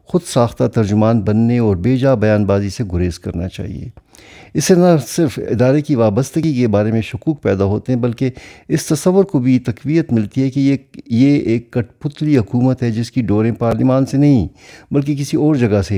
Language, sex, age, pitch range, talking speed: Urdu, male, 50-69, 100-125 Hz, 200 wpm